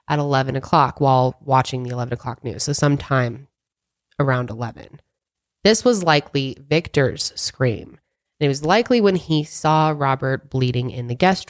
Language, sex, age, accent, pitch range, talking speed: English, female, 20-39, American, 135-165 Hz, 155 wpm